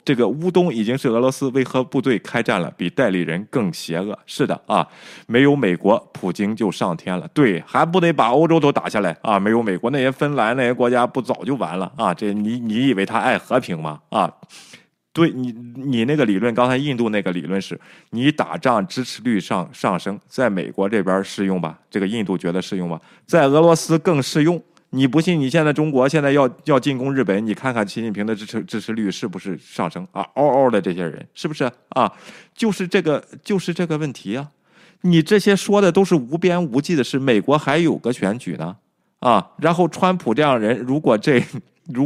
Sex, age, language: male, 20-39, Chinese